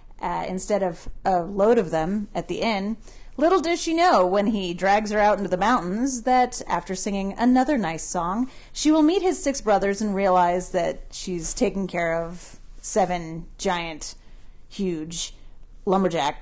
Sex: female